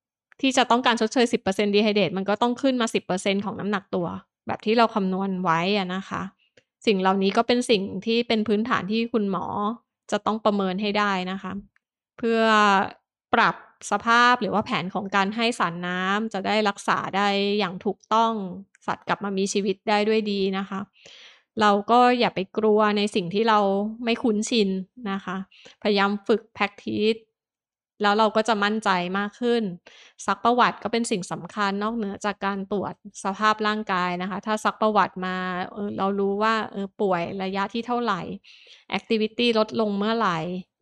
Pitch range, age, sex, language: 195-225 Hz, 20-39, female, Thai